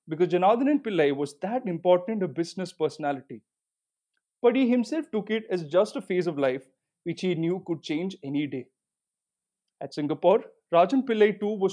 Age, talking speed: 20-39, 170 wpm